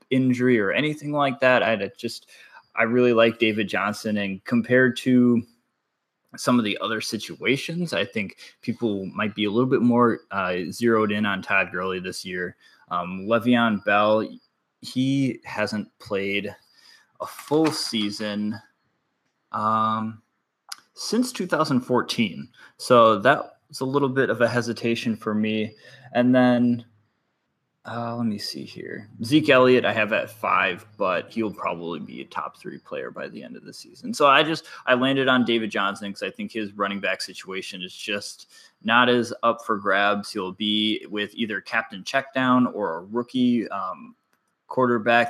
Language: English